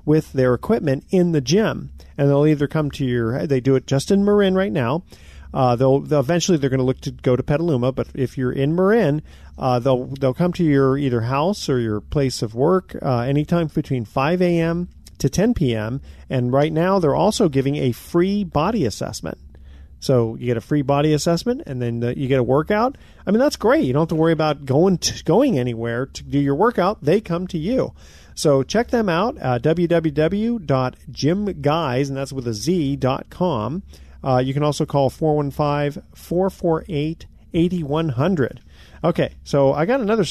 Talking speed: 185 wpm